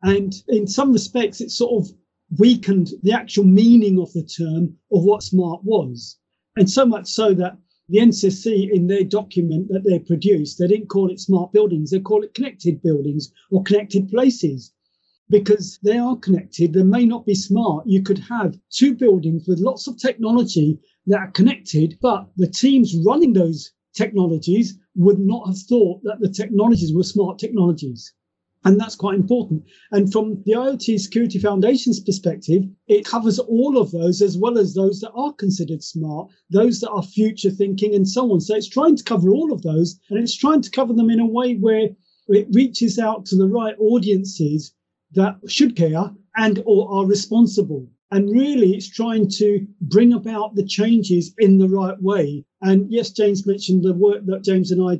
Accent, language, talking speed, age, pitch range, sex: British, English, 185 wpm, 40-59, 180-220 Hz, male